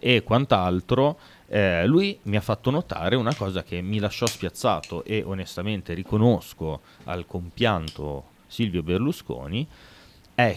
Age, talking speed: 30-49, 120 wpm